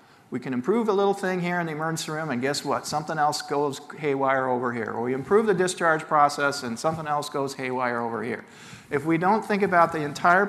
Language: English